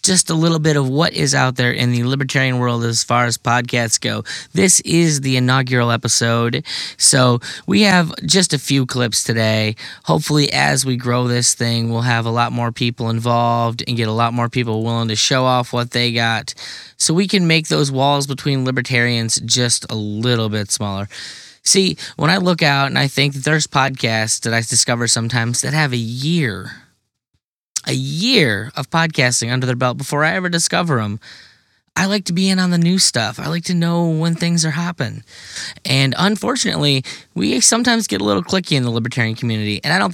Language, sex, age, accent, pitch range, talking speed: English, male, 10-29, American, 120-160 Hz, 195 wpm